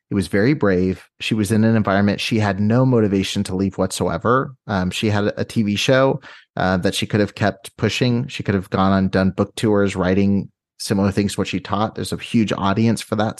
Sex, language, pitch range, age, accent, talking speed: male, English, 95-115 Hz, 30-49, American, 225 wpm